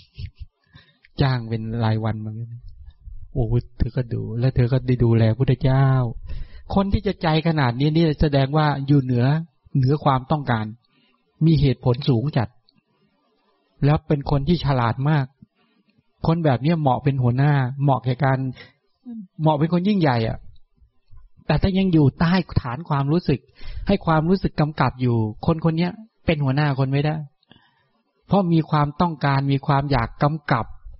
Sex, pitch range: male, 125-160 Hz